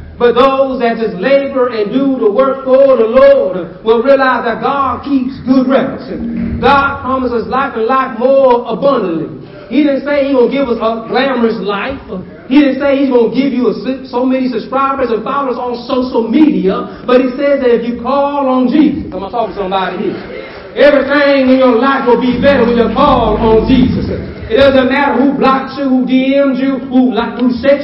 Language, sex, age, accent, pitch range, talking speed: English, male, 40-59, American, 235-270 Hz, 205 wpm